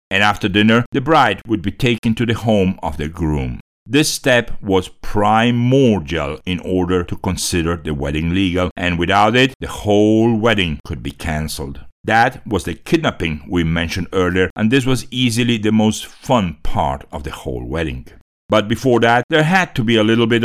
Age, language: 60-79, Chinese